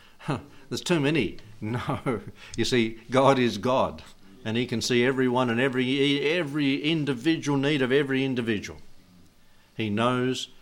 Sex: male